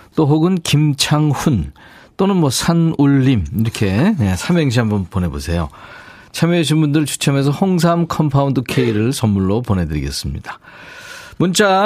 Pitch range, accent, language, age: 115-165 Hz, native, Korean, 40-59